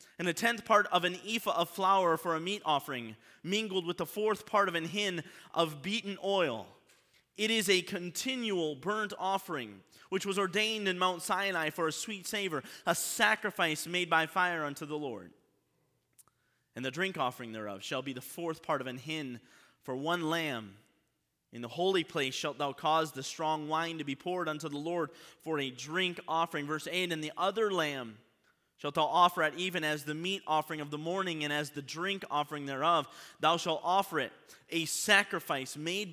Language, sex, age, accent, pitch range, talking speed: English, male, 30-49, American, 135-185 Hz, 190 wpm